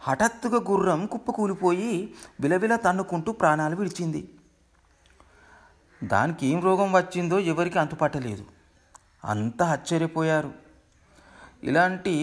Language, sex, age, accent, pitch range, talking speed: Telugu, male, 40-59, native, 130-165 Hz, 80 wpm